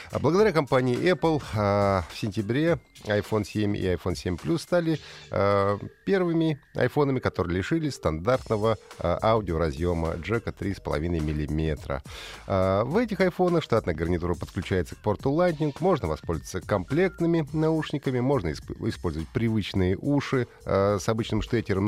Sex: male